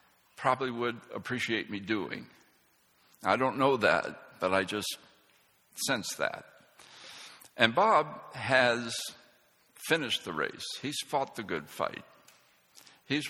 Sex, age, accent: male, 60-79, American